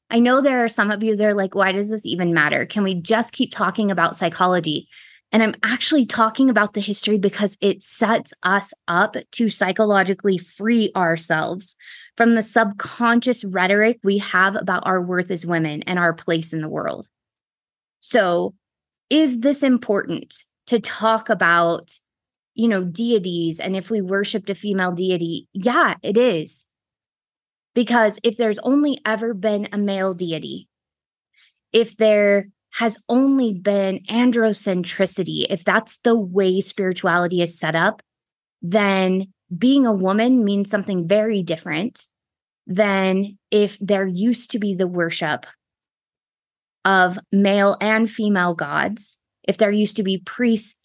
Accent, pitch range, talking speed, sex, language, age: American, 185-225 Hz, 150 wpm, female, English, 20-39